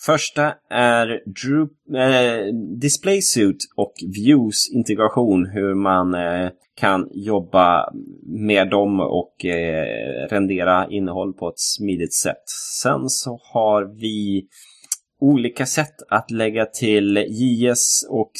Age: 20-39